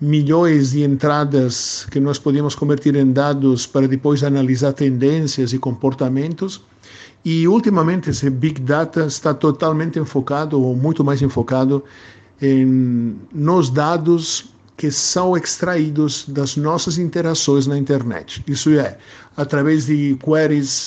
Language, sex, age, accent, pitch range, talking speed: Portuguese, male, 50-69, Italian, 135-160 Hz, 125 wpm